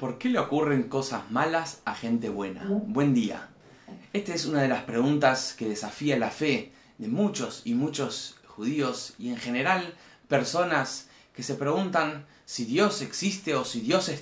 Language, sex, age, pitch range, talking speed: Spanish, male, 20-39, 125-190 Hz, 170 wpm